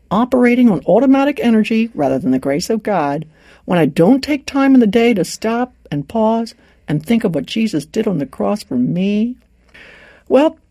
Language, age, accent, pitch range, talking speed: English, 60-79, American, 165-230 Hz, 190 wpm